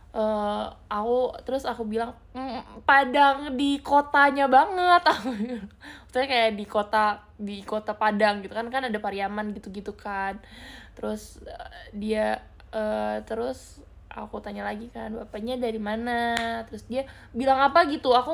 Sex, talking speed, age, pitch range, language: female, 140 wpm, 20-39, 210-260 Hz, Malay